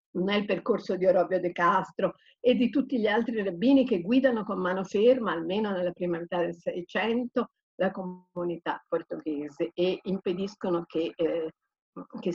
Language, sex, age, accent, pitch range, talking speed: Italian, female, 50-69, native, 165-195 Hz, 150 wpm